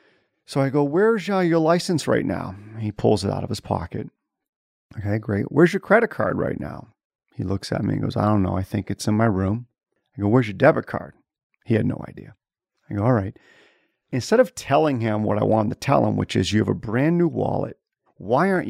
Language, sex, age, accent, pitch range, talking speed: English, male, 40-59, American, 105-145 Hz, 230 wpm